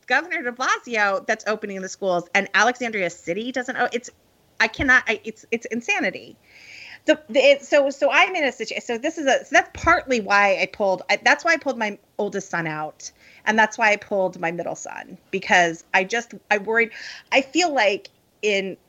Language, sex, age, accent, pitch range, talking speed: English, female, 30-49, American, 180-250 Hz, 205 wpm